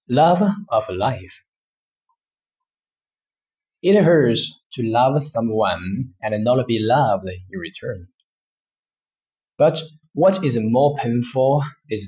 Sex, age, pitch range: male, 20-39, 120-155 Hz